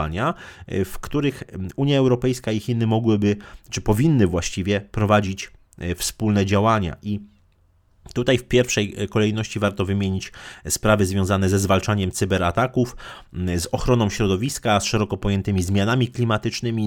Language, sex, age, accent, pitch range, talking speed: Polish, male, 30-49, native, 100-125 Hz, 115 wpm